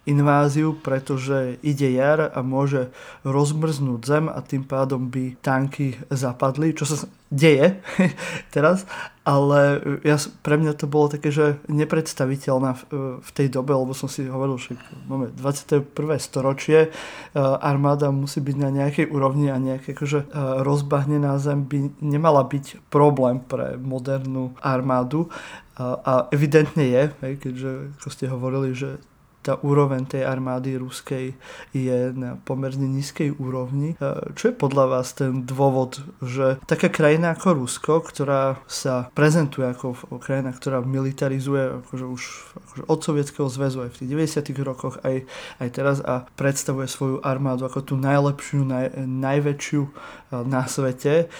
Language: Slovak